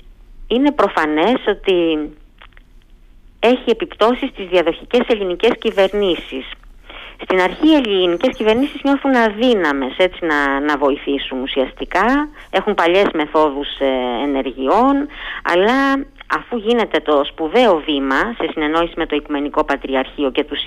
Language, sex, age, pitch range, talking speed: Greek, female, 50-69, 145-240 Hz, 115 wpm